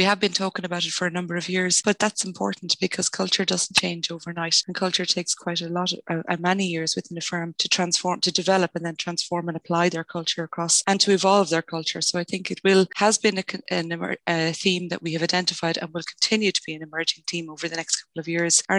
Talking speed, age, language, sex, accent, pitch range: 250 wpm, 20-39, English, female, Irish, 165-185 Hz